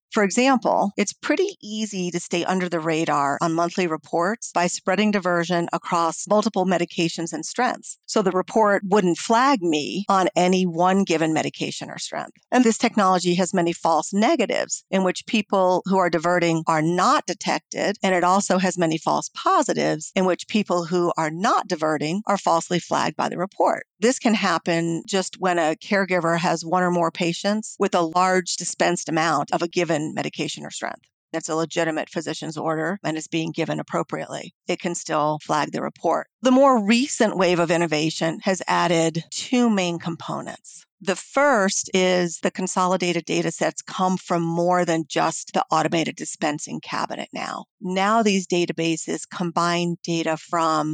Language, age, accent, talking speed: English, 40-59, American, 170 wpm